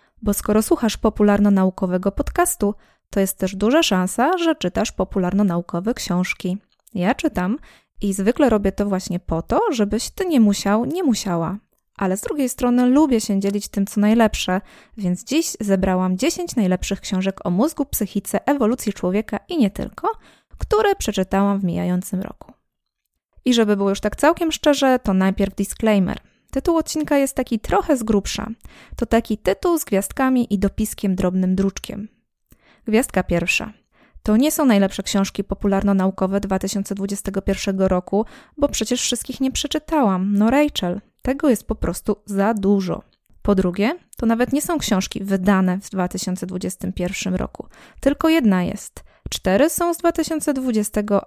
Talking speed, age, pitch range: 145 wpm, 20-39, 195-255 Hz